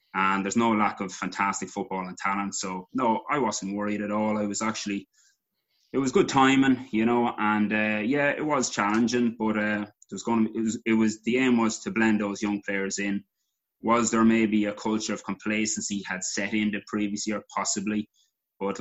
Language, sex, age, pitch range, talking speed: English, male, 20-39, 100-110 Hz, 200 wpm